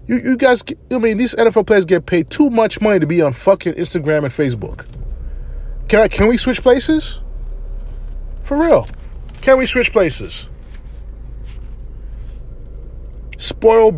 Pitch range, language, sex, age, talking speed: 130-200 Hz, English, male, 20-39, 140 wpm